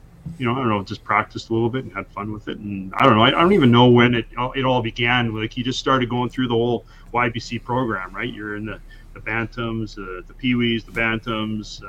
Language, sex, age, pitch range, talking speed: English, male, 30-49, 105-125 Hz, 250 wpm